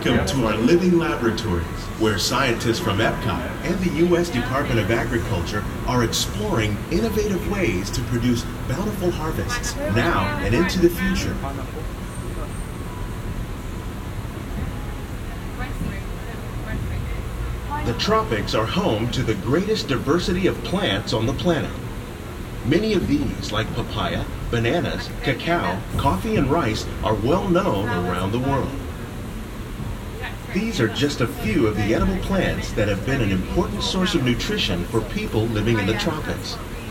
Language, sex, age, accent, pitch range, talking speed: English, male, 40-59, American, 105-130 Hz, 130 wpm